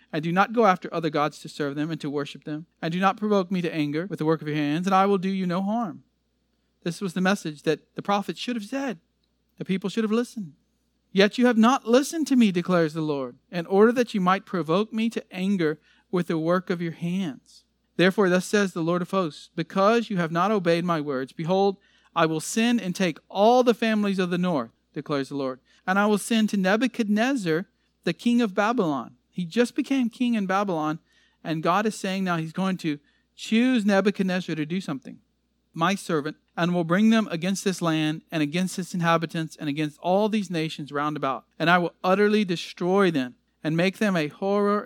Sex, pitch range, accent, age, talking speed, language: male, 160-205 Hz, American, 40-59, 220 wpm, English